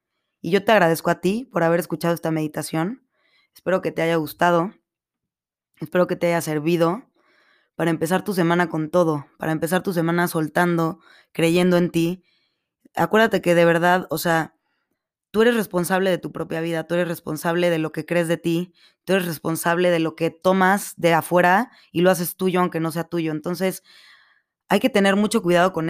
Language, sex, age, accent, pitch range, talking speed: Spanish, female, 20-39, Mexican, 165-185 Hz, 190 wpm